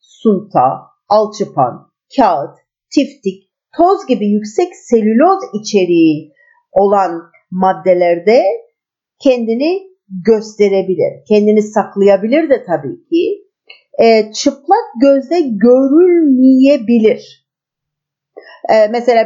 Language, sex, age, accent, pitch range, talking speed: Turkish, female, 50-69, native, 210-330 Hz, 70 wpm